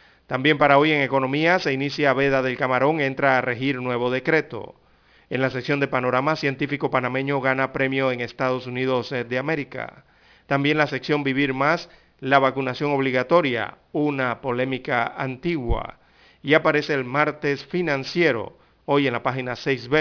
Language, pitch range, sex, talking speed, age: Spanish, 125-145 Hz, male, 150 wpm, 40-59